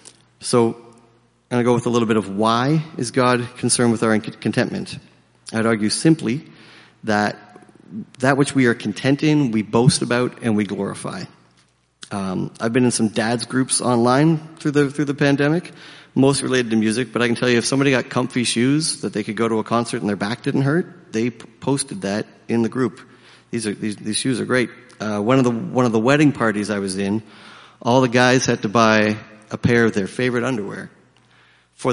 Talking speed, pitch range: 205 wpm, 105-125 Hz